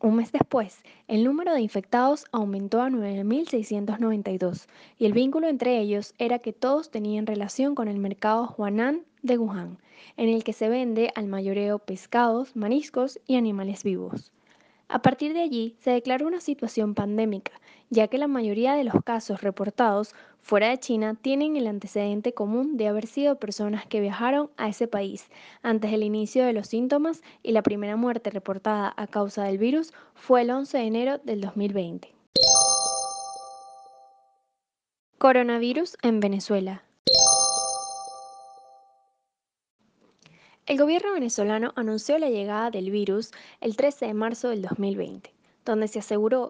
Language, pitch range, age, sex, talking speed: Spanish, 200-250 Hz, 10-29, female, 145 wpm